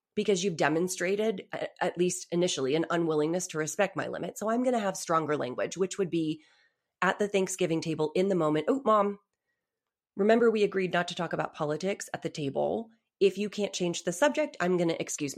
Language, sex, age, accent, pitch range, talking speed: English, female, 30-49, American, 165-215 Hz, 195 wpm